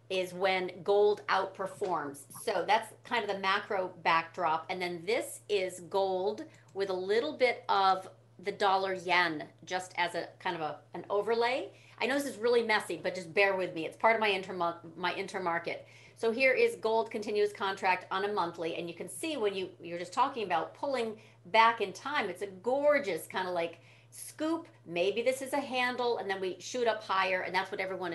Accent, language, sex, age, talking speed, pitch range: American, English, female, 40-59, 200 wpm, 175-225 Hz